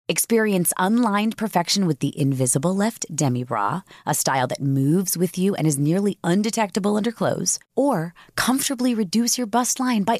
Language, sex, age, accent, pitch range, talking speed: English, female, 30-49, American, 145-230 Hz, 165 wpm